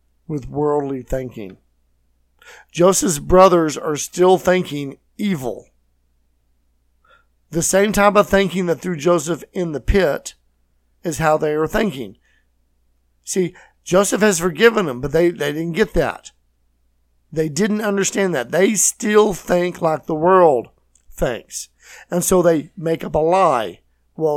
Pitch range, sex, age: 125-180 Hz, male, 50-69